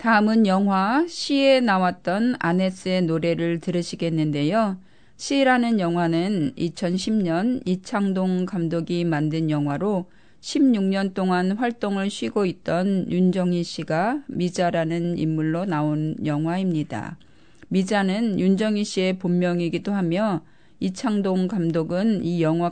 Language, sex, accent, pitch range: Korean, female, native, 170-205 Hz